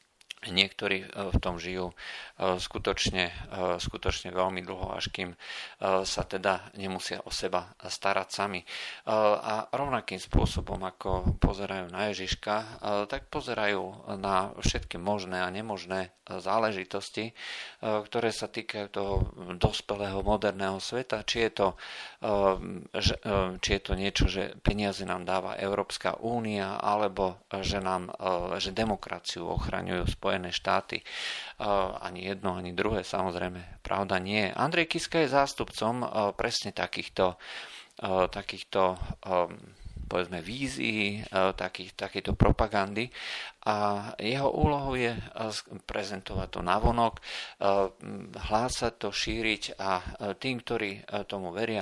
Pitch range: 95-110 Hz